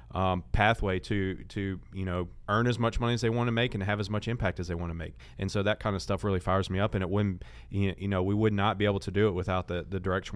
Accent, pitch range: American, 95-105 Hz